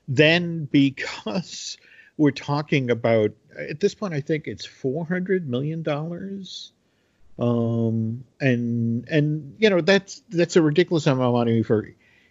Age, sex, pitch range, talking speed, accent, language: 50-69, male, 120-160 Hz, 130 wpm, American, English